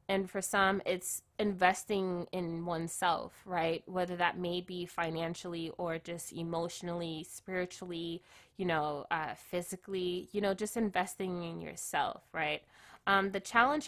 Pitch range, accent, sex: 170-200 Hz, American, female